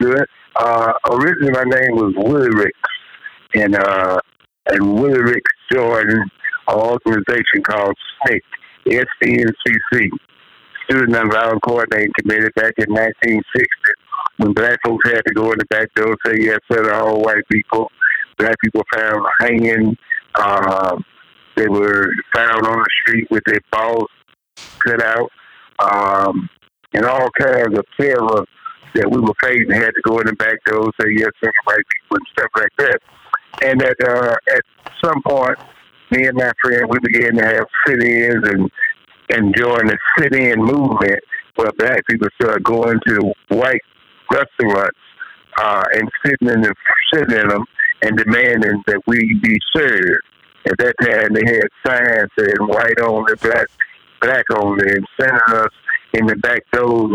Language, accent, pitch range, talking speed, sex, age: English, American, 105-120 Hz, 155 wpm, male, 60-79